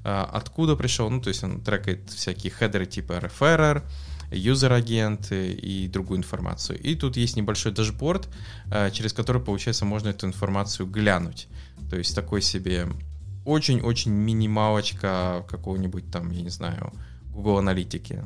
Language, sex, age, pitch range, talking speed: English, male, 20-39, 95-115 Hz, 135 wpm